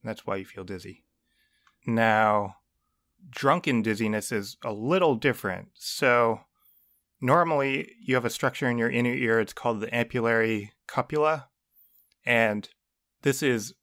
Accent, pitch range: American, 105-125 Hz